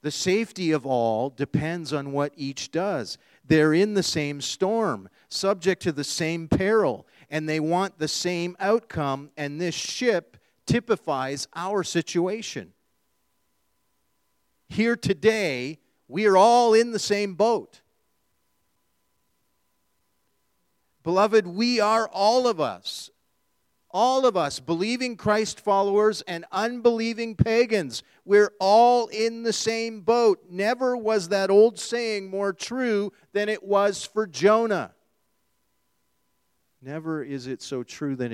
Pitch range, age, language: 145-210 Hz, 40-59, English